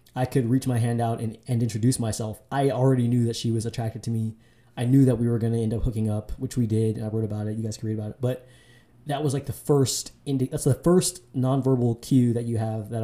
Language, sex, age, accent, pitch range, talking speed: English, male, 20-39, American, 115-125 Hz, 275 wpm